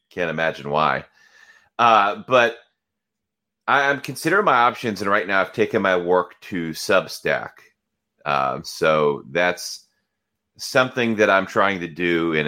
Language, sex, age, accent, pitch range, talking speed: English, male, 30-49, American, 80-110 Hz, 140 wpm